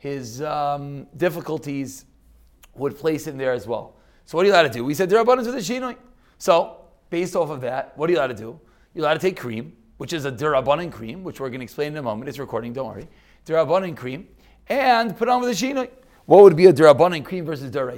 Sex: male